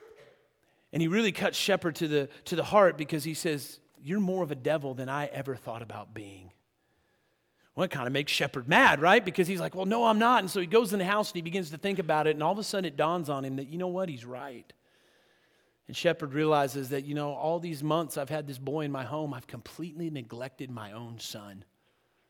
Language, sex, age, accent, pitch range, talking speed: English, male, 40-59, American, 130-165 Hz, 240 wpm